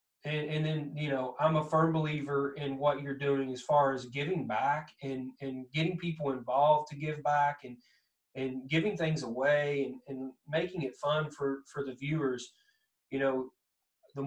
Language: English